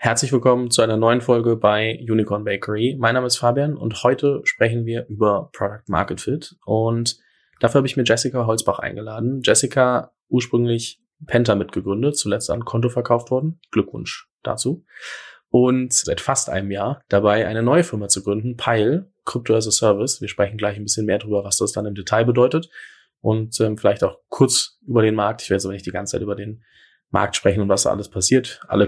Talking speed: 195 wpm